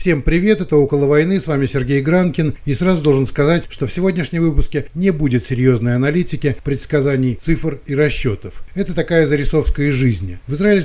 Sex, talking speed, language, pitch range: male, 170 wpm, Russian, 125-150 Hz